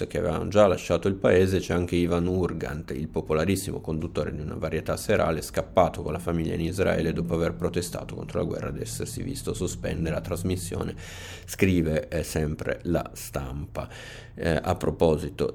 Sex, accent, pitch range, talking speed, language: male, native, 75-90 Hz, 165 wpm, Italian